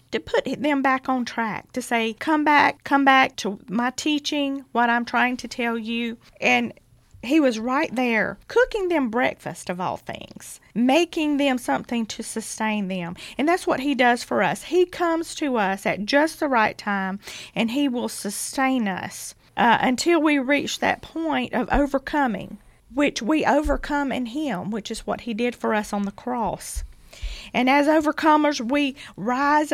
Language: English